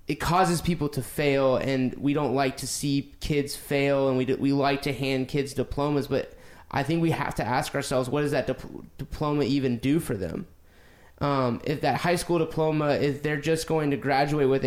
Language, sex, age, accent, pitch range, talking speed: English, male, 20-39, American, 130-155 Hz, 215 wpm